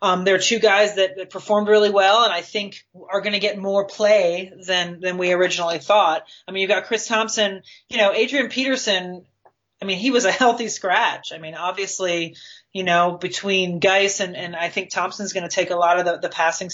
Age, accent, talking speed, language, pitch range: 30-49, American, 225 wpm, English, 170-205 Hz